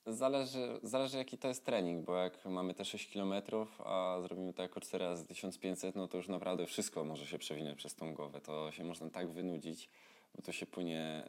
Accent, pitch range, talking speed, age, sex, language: native, 80-95 Hz, 205 wpm, 20-39, male, Polish